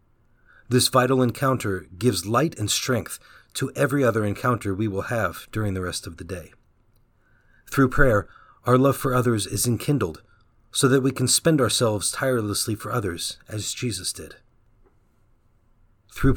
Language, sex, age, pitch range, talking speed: English, male, 40-59, 100-120 Hz, 150 wpm